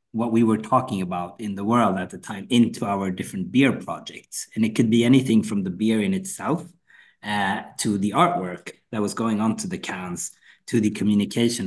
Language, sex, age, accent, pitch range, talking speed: English, male, 30-49, Norwegian, 95-115 Hz, 205 wpm